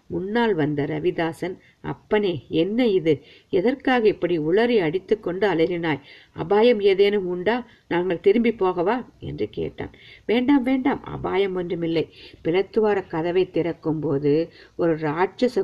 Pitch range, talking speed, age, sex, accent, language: 155-205 Hz, 115 wpm, 50-69, female, native, Tamil